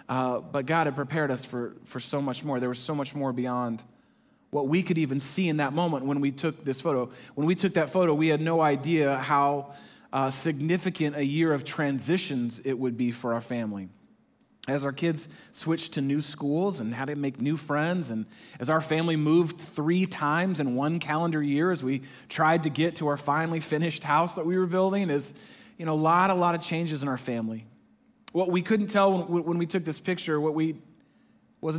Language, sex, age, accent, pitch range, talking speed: English, male, 30-49, American, 130-165 Hz, 215 wpm